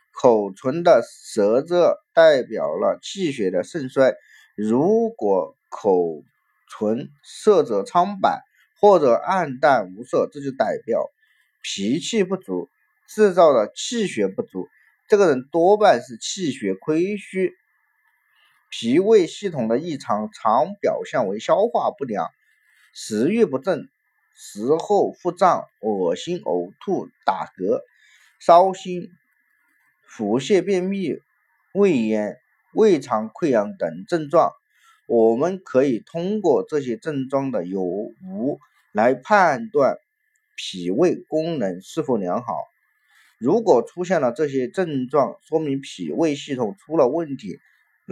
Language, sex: Chinese, male